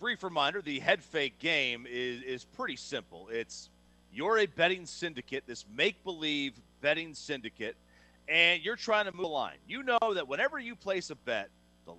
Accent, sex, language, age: American, male, English, 40-59